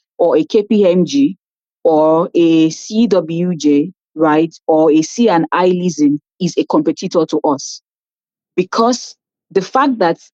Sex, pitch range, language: female, 160-215 Hz, English